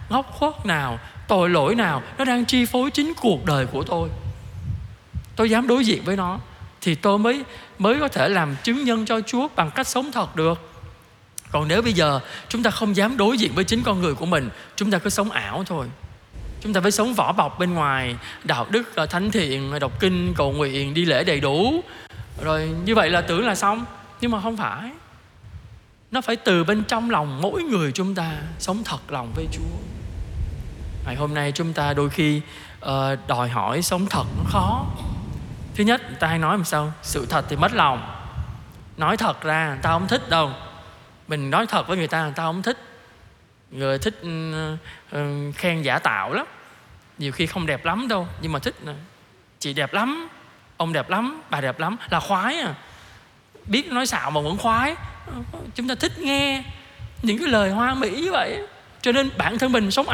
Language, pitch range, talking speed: Vietnamese, 145-225 Hz, 200 wpm